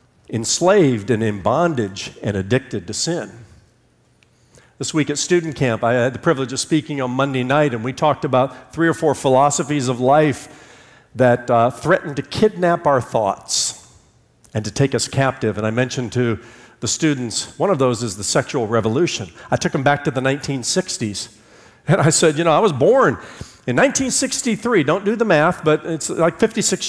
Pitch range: 125-190 Hz